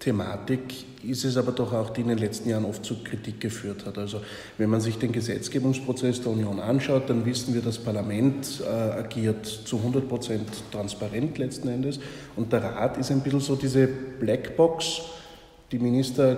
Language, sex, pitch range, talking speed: German, male, 105-125 Hz, 180 wpm